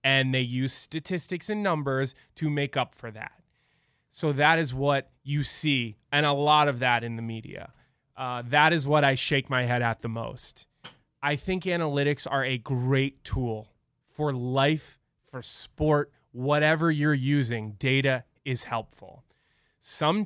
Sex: male